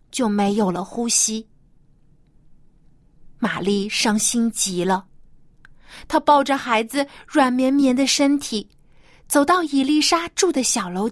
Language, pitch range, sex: Chinese, 175-285 Hz, female